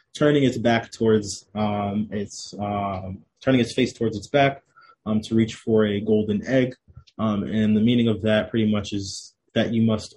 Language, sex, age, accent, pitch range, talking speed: English, male, 20-39, American, 100-115 Hz, 190 wpm